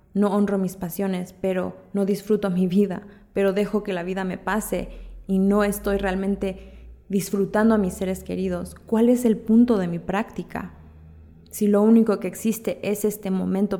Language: Spanish